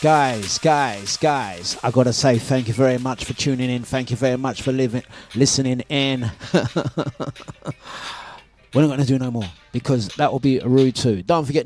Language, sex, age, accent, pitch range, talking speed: English, male, 30-49, British, 125-150 Hz, 185 wpm